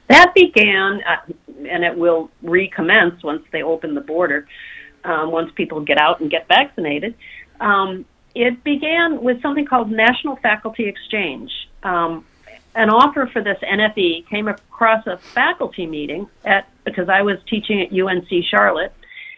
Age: 50-69